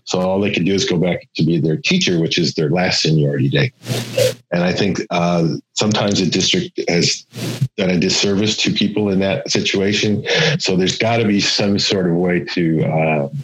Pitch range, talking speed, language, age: 85-120 Hz, 200 wpm, English, 50-69